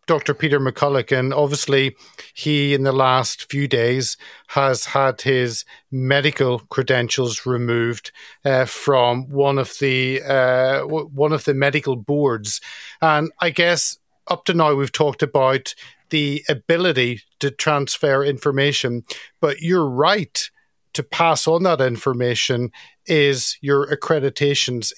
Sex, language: male, English